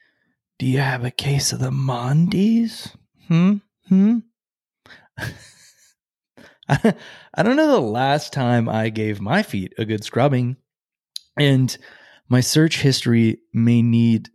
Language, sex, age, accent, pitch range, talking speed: English, male, 20-39, American, 110-150 Hz, 120 wpm